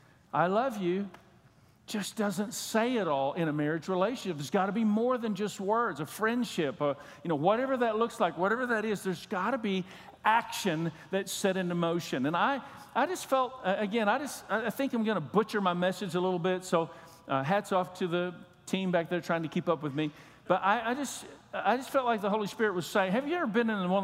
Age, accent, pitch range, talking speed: 50-69, American, 175-220 Hz, 235 wpm